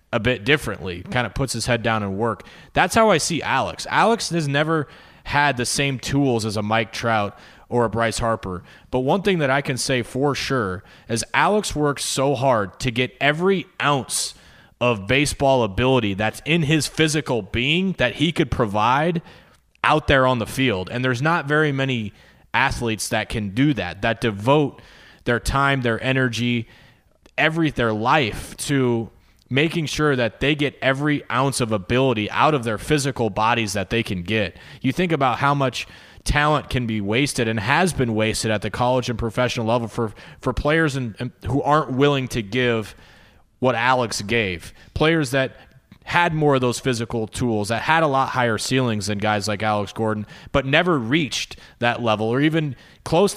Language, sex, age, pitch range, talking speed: English, male, 20-39, 110-145 Hz, 180 wpm